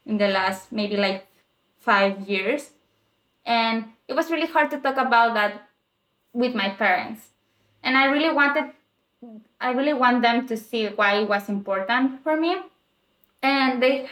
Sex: female